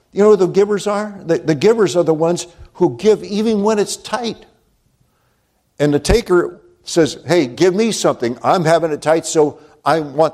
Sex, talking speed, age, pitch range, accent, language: male, 190 wpm, 60-79, 145-175 Hz, American, English